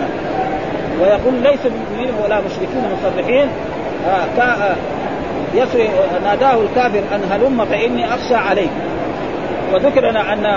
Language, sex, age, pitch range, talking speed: Arabic, male, 40-59, 230-280 Hz, 100 wpm